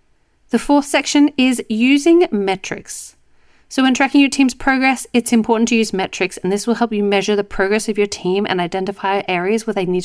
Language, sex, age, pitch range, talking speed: English, female, 40-59, 195-245 Hz, 205 wpm